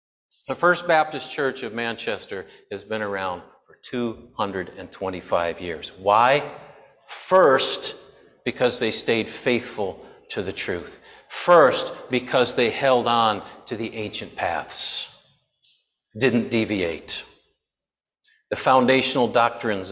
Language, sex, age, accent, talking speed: English, male, 50-69, American, 105 wpm